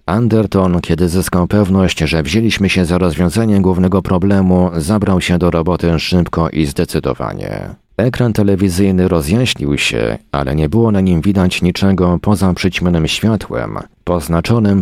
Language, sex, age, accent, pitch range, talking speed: Polish, male, 40-59, native, 85-105 Hz, 135 wpm